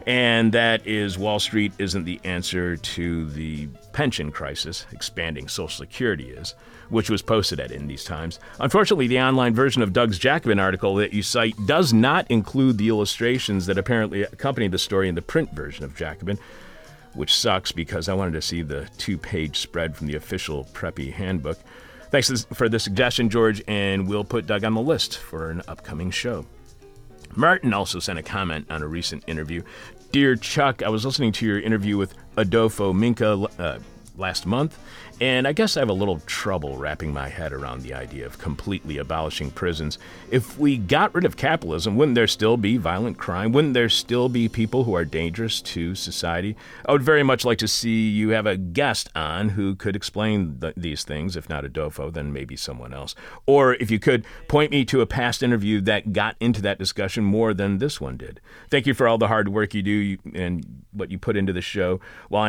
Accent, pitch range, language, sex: American, 85-115 Hz, English, male